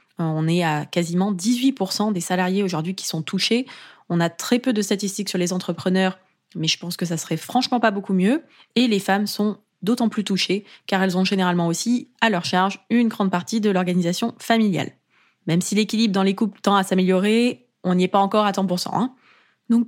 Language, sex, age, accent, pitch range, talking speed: French, female, 20-39, French, 185-230 Hz, 210 wpm